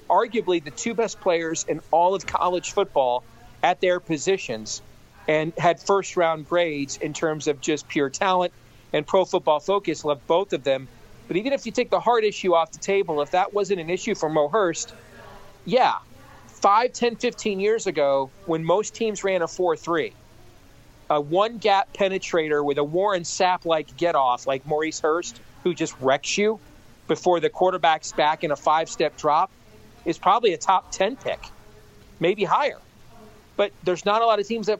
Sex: male